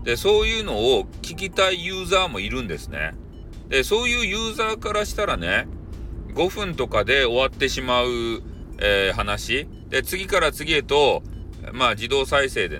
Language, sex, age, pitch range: Japanese, male, 40-59, 85-140 Hz